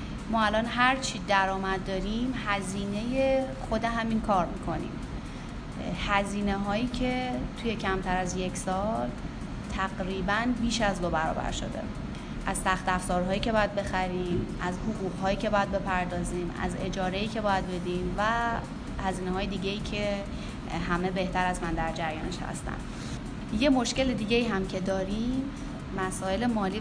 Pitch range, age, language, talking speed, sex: 185-235 Hz, 30-49, Persian, 135 wpm, female